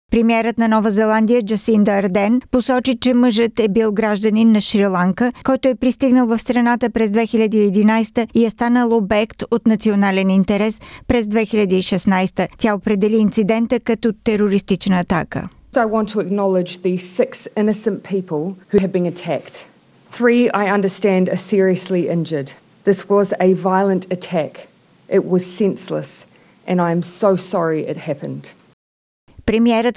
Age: 40-59